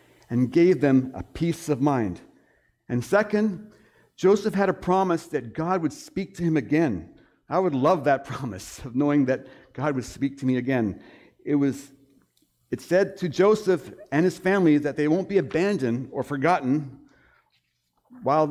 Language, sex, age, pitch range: English, male, 60-79, 130-180 Hz